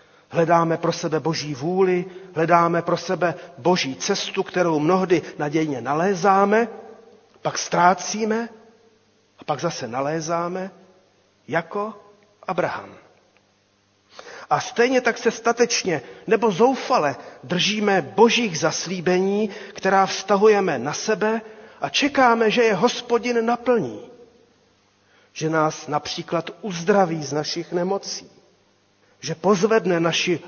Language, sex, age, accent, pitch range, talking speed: Czech, male, 40-59, native, 170-220 Hz, 100 wpm